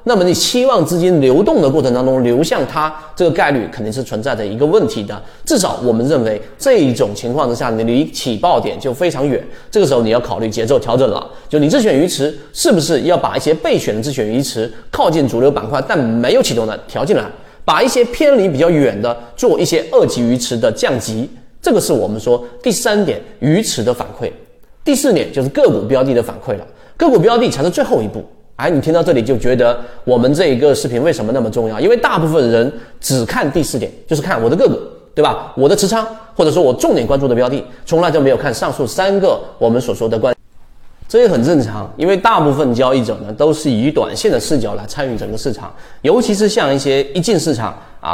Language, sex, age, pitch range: Chinese, male, 30-49, 120-180 Hz